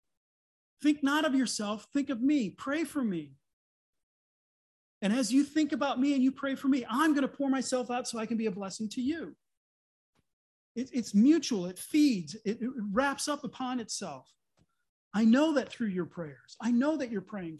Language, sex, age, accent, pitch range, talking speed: English, male, 40-59, American, 185-255 Hz, 190 wpm